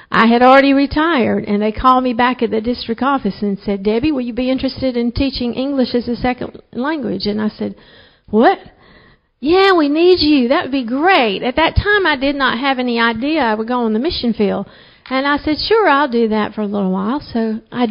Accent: American